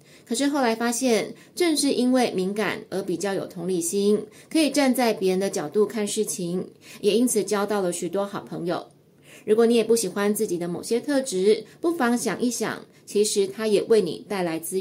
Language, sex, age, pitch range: Chinese, female, 20-39, 195-245 Hz